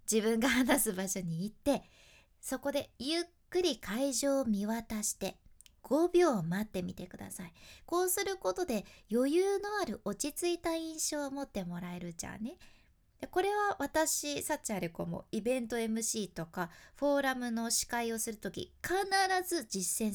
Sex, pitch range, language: female, 205-305 Hz, Japanese